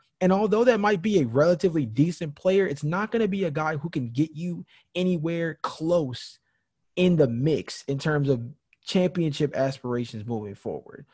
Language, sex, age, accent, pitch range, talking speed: English, male, 20-39, American, 135-175 Hz, 170 wpm